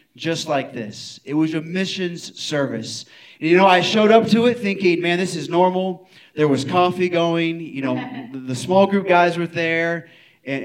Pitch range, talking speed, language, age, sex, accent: 150-215 Hz, 190 wpm, English, 30-49, male, American